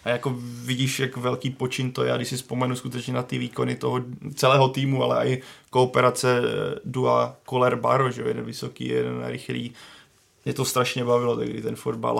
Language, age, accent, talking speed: Czech, 20-39, native, 180 wpm